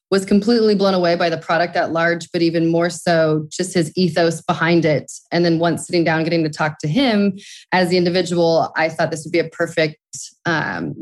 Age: 20-39